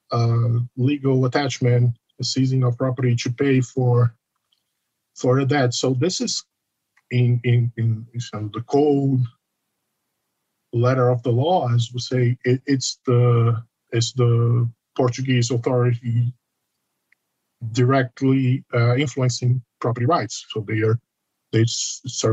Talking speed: 125 wpm